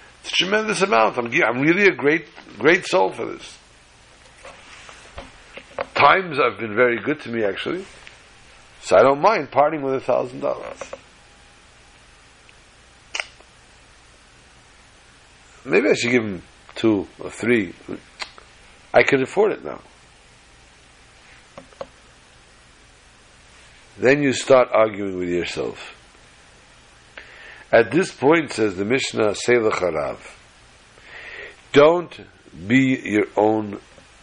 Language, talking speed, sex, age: English, 105 wpm, male, 60-79